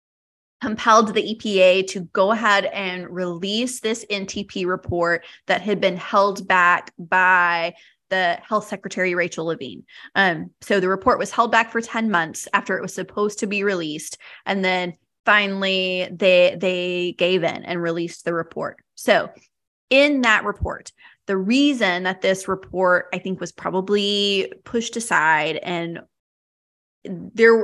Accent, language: American, English